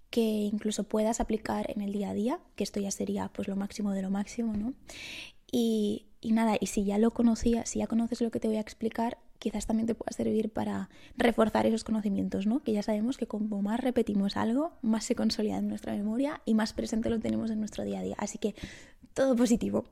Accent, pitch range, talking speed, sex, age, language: Spanish, 205-240 Hz, 225 wpm, female, 20-39, Spanish